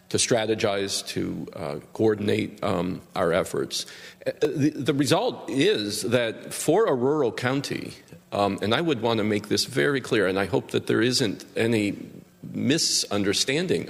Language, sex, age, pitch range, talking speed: English, male, 50-69, 105-140 Hz, 150 wpm